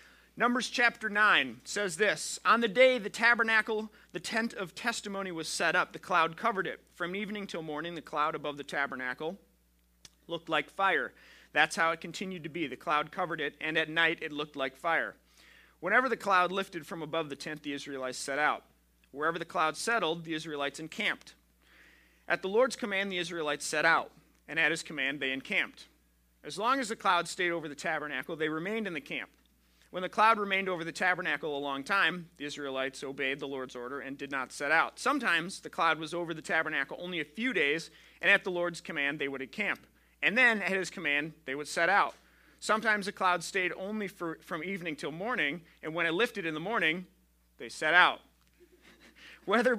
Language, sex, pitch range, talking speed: English, male, 145-200 Hz, 200 wpm